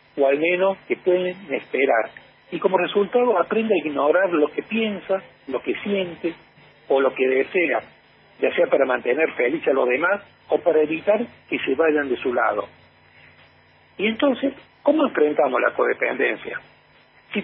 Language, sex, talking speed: Spanish, male, 160 wpm